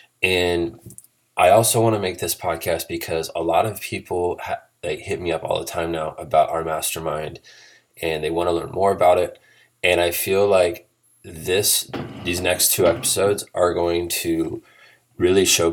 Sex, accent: male, American